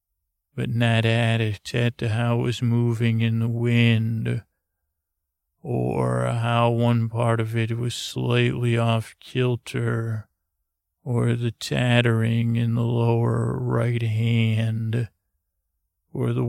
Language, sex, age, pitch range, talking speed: English, male, 40-59, 90-120 Hz, 115 wpm